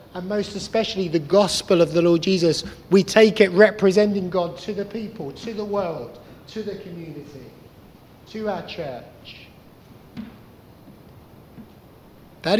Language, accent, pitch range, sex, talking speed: English, British, 125-175 Hz, male, 130 wpm